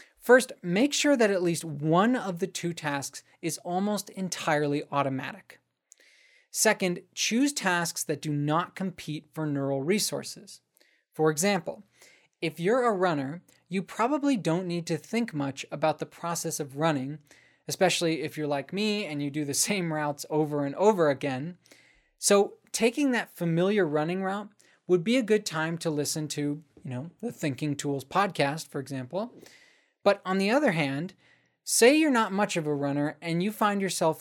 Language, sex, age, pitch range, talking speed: English, male, 20-39, 150-200 Hz, 165 wpm